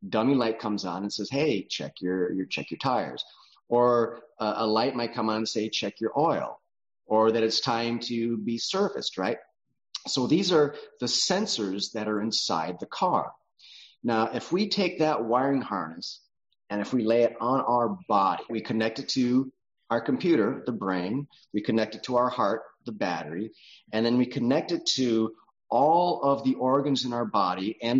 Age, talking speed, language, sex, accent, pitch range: 30-49, 190 wpm, English, male, American, 110-140 Hz